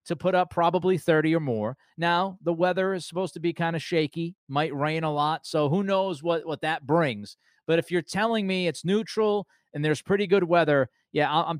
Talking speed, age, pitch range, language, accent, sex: 215 wpm, 30-49, 135-170 Hz, English, American, male